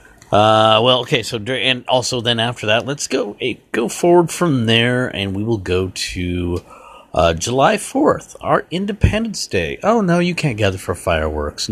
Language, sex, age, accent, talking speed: English, male, 50-69, American, 180 wpm